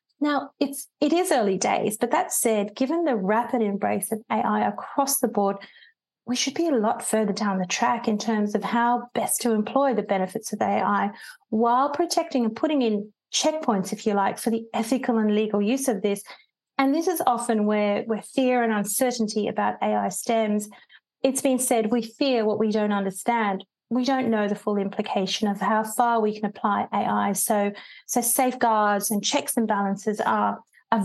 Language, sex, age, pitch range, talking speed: English, female, 30-49, 210-255 Hz, 190 wpm